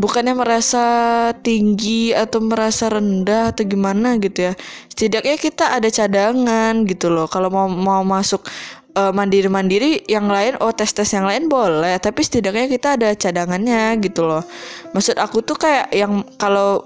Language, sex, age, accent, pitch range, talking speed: Indonesian, female, 20-39, native, 190-230 Hz, 150 wpm